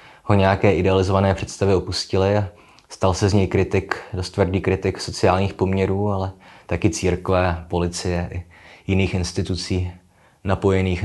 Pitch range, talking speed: 85-100 Hz, 130 wpm